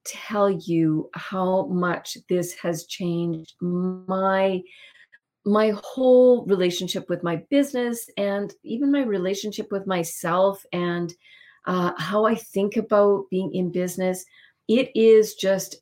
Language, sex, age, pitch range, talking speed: English, female, 40-59, 180-215 Hz, 120 wpm